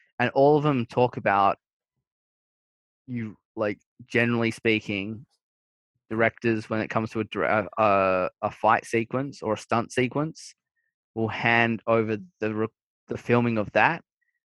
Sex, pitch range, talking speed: male, 110-125 Hz, 135 wpm